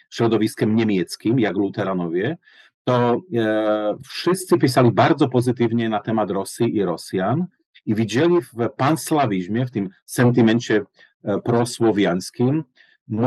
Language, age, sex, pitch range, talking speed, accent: English, 40-59, male, 110-130 Hz, 100 wpm, Polish